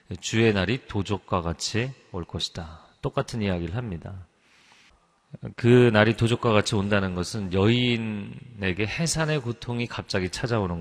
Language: Korean